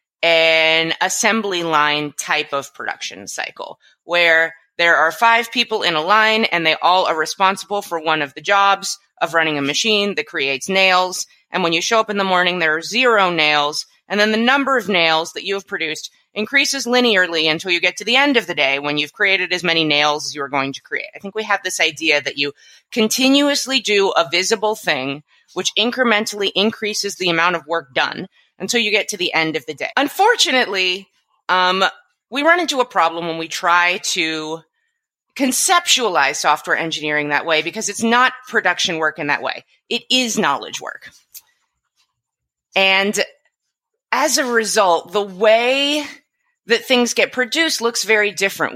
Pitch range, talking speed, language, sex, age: 165-230 Hz, 180 wpm, English, female, 30-49